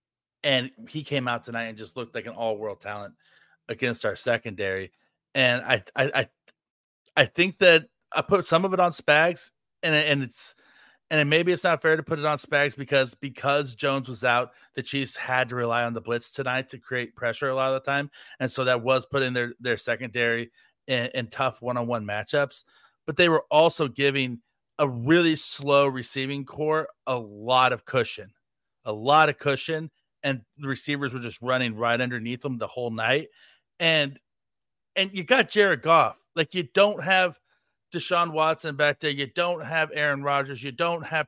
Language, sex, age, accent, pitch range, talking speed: English, male, 30-49, American, 125-155 Hz, 190 wpm